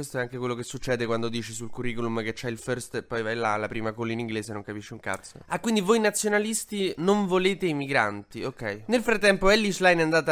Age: 20-39